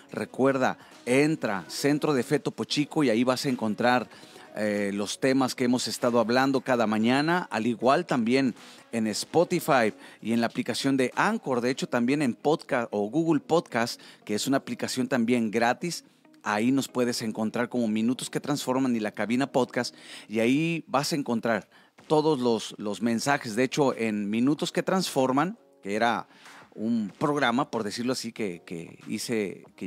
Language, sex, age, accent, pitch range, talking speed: Spanish, male, 40-59, Mexican, 110-145 Hz, 165 wpm